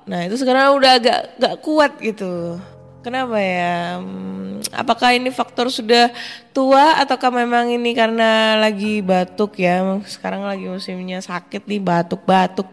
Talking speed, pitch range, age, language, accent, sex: 130 wpm, 175-230 Hz, 20-39, Indonesian, native, female